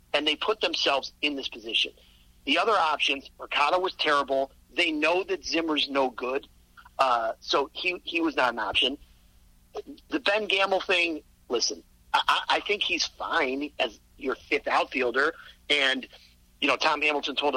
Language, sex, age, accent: English, male, 40-59, American